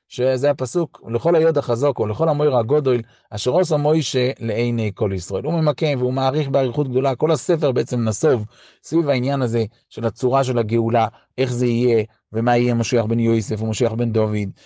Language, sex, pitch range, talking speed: Hebrew, male, 120-155 Hz, 170 wpm